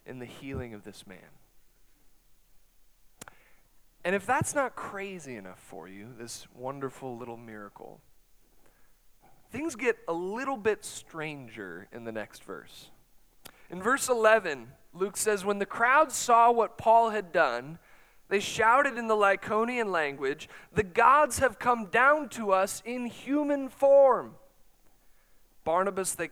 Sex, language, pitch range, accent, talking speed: male, English, 150-220 Hz, American, 135 wpm